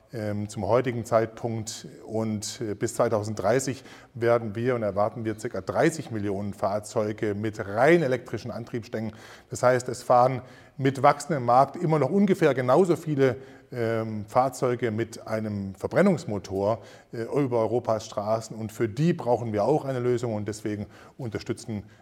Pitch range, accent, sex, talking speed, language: 110-135 Hz, German, male, 135 wpm, German